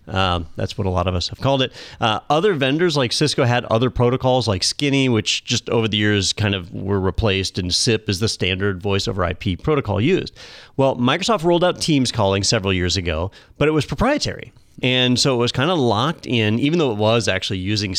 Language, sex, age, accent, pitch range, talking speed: English, male, 30-49, American, 100-135 Hz, 220 wpm